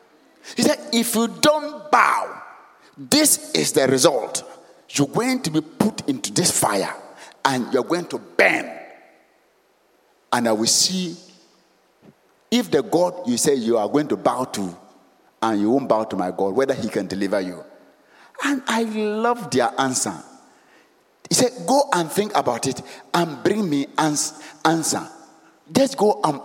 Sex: male